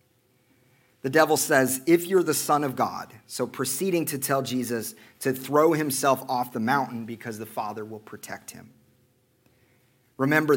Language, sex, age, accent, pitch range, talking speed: English, male, 40-59, American, 125-170 Hz, 155 wpm